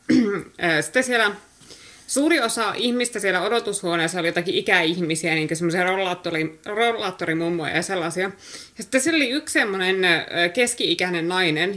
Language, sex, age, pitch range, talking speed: Finnish, female, 20-39, 175-240 Hz, 110 wpm